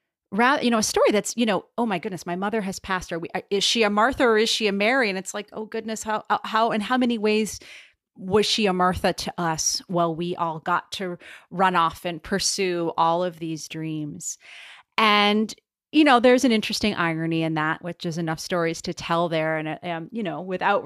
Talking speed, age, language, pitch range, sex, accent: 225 wpm, 30-49, English, 165-220 Hz, female, American